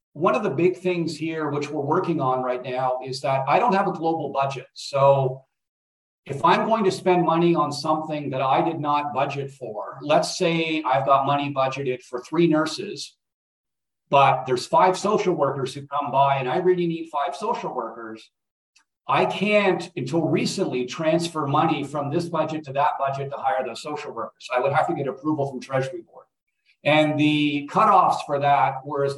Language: English